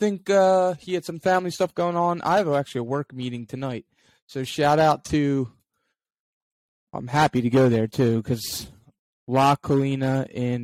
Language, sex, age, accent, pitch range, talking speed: English, male, 20-39, American, 120-150 Hz, 170 wpm